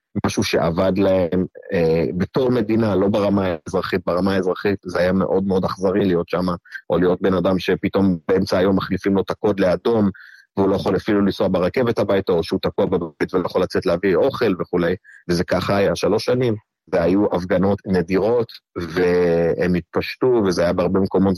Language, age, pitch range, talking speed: Hebrew, 30-49, 90-105 Hz, 165 wpm